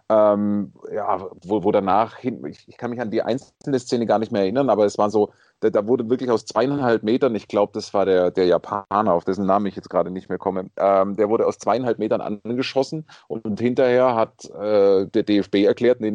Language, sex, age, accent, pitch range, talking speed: German, male, 30-49, German, 100-130 Hz, 210 wpm